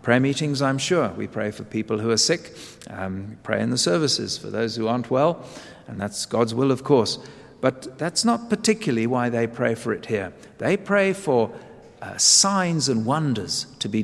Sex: male